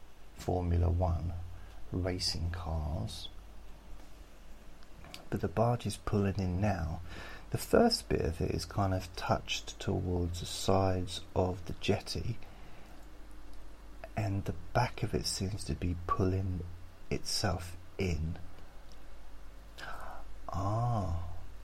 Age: 40-59